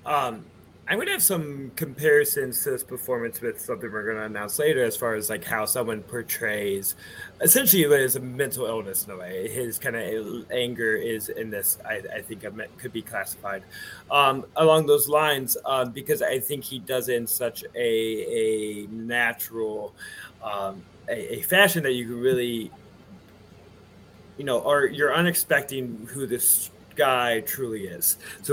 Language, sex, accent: English, male, American